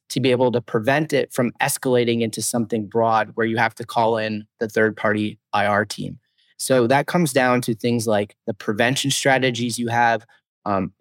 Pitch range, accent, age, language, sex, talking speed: 115-130 Hz, American, 30-49, English, male, 185 wpm